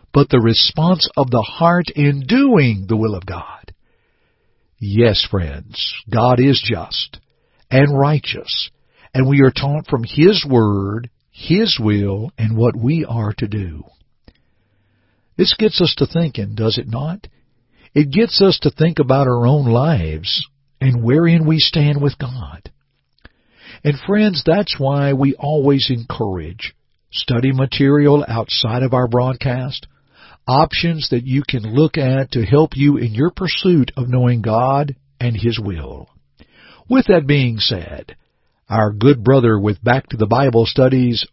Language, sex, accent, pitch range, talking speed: English, male, American, 110-145 Hz, 145 wpm